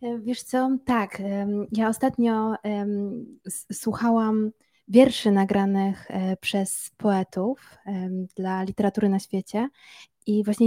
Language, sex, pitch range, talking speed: Polish, female, 200-240 Hz, 100 wpm